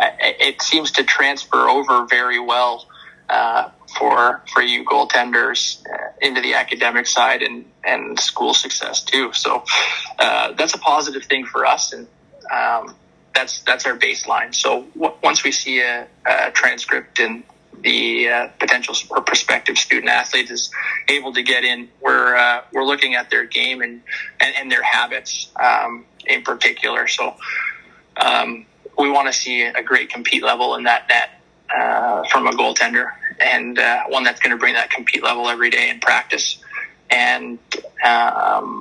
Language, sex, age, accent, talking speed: English, male, 30-49, American, 160 wpm